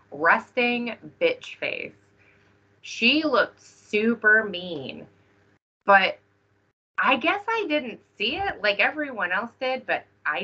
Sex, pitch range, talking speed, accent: female, 140-215 Hz, 115 wpm, American